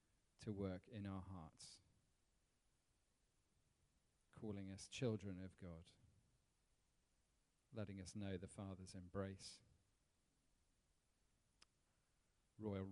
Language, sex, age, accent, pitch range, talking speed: English, male, 40-59, British, 90-100 Hz, 80 wpm